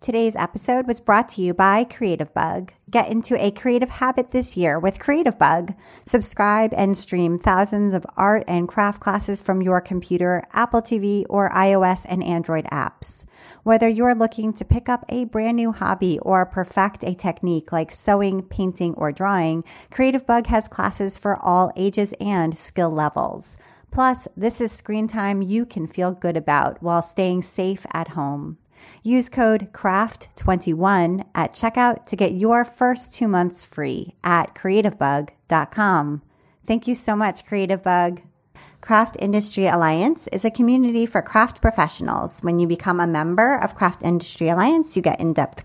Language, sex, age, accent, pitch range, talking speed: English, female, 30-49, American, 175-225 Hz, 160 wpm